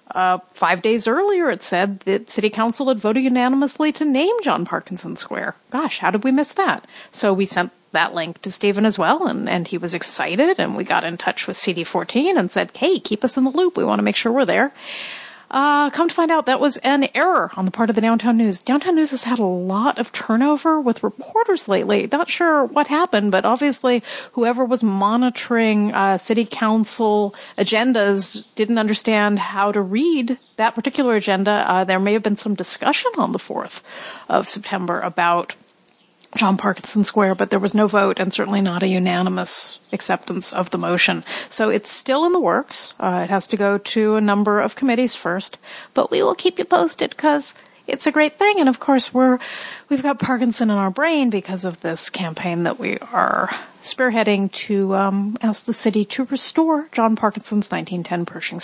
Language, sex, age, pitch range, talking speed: English, female, 40-59, 195-275 Hz, 200 wpm